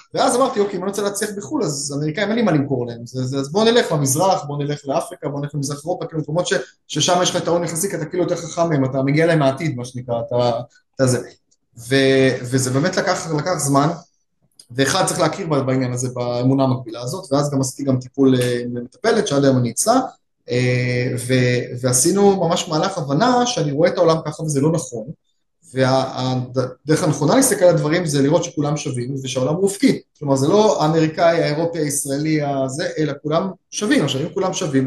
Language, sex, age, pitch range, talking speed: Hebrew, male, 20-39, 135-175 Hz, 190 wpm